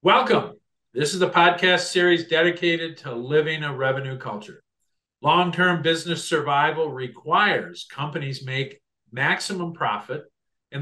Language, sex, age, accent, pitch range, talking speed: English, male, 50-69, American, 130-175 Hz, 115 wpm